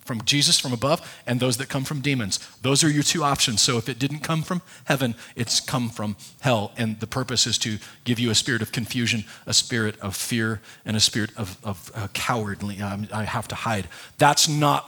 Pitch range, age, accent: 115-150 Hz, 40-59, American